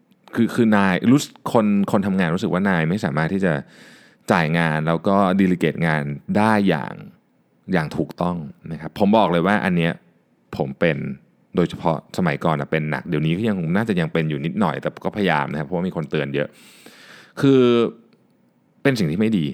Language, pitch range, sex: Thai, 80-110 Hz, male